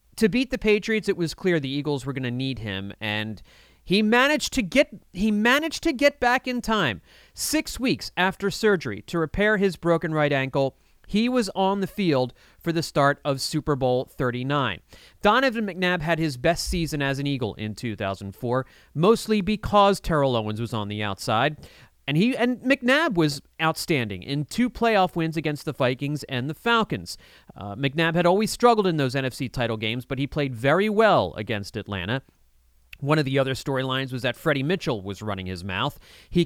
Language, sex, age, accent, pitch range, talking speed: English, male, 30-49, American, 120-190 Hz, 190 wpm